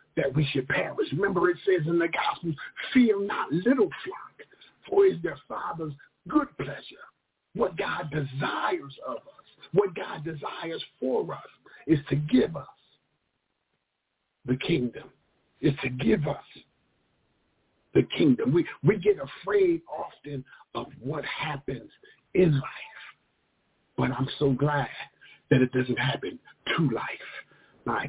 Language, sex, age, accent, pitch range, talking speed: English, male, 50-69, American, 135-185 Hz, 135 wpm